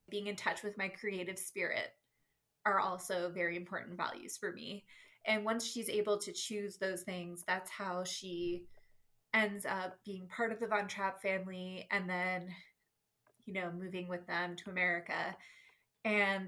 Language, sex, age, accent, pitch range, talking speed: English, female, 20-39, American, 185-210 Hz, 160 wpm